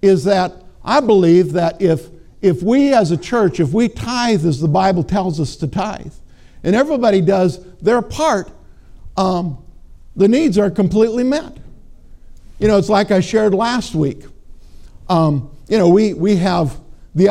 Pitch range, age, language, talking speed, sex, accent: 160-200 Hz, 60-79, English, 165 wpm, male, American